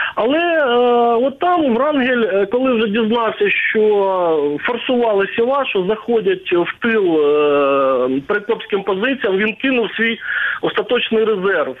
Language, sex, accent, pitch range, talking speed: Ukrainian, male, native, 185-245 Hz, 110 wpm